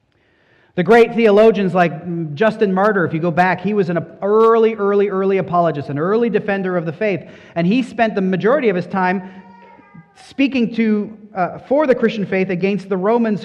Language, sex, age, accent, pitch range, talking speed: English, male, 30-49, American, 150-215 Hz, 185 wpm